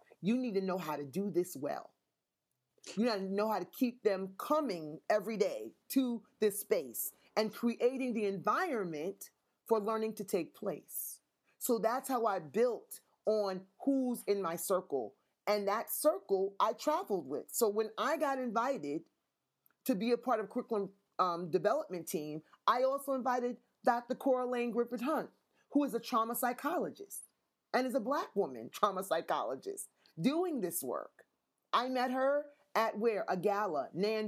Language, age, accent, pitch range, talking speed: English, 30-49, American, 205-250 Hz, 160 wpm